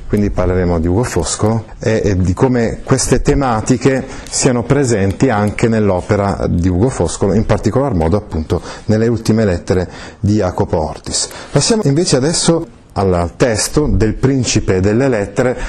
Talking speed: 140 wpm